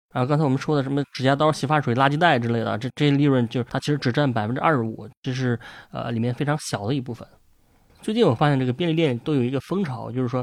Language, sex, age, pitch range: Chinese, male, 20-39, 120-155 Hz